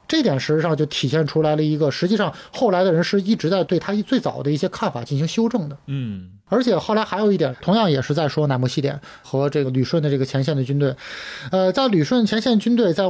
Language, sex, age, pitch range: Chinese, male, 20-39, 140-200 Hz